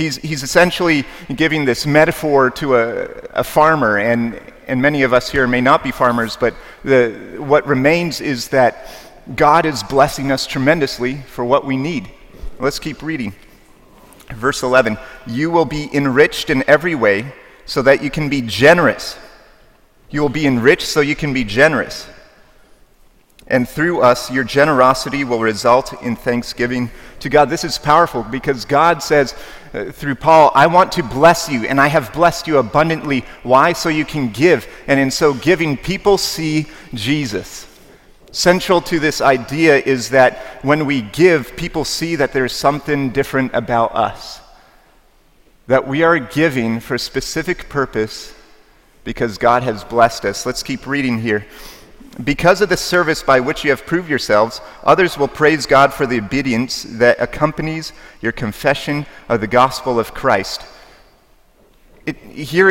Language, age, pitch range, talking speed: English, 40-59, 125-155 Hz, 160 wpm